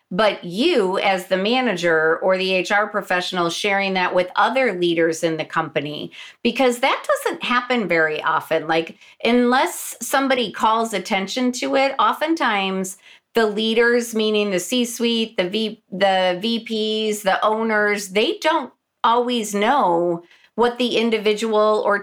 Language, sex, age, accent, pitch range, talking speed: English, female, 40-59, American, 180-230 Hz, 135 wpm